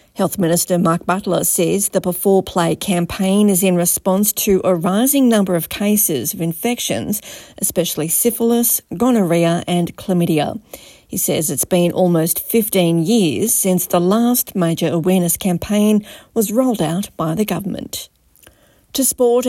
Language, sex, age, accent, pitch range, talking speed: English, female, 40-59, Australian, 175-220 Hz, 140 wpm